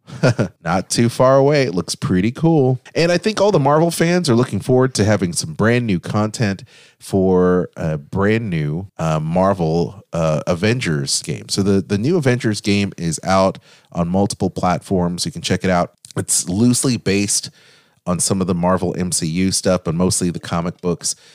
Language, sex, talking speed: English, male, 180 wpm